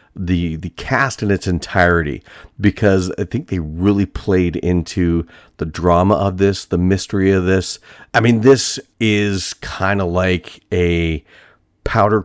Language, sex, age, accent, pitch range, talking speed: English, male, 40-59, American, 85-100 Hz, 145 wpm